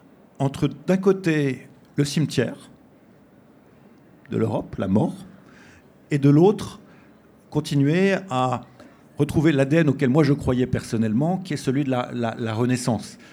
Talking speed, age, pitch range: 130 wpm, 50-69, 115-140 Hz